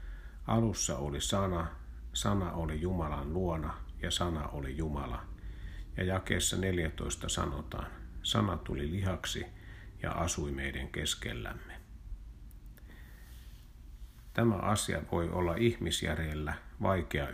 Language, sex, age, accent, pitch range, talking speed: Finnish, male, 50-69, native, 70-90 Hz, 95 wpm